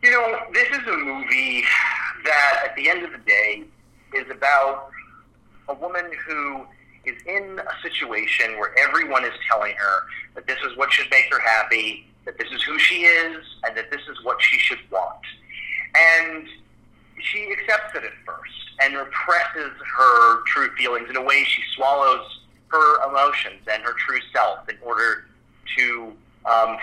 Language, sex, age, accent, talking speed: English, male, 40-59, American, 170 wpm